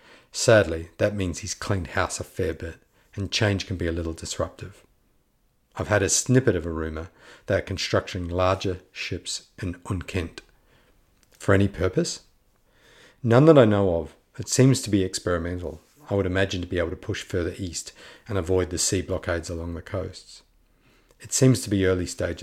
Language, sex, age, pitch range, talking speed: English, male, 50-69, 85-105 Hz, 180 wpm